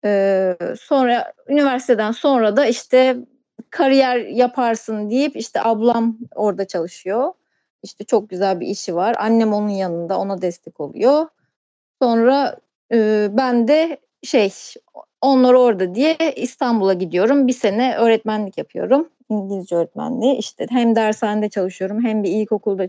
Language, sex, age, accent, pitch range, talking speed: Turkish, female, 30-49, native, 210-265 Hz, 125 wpm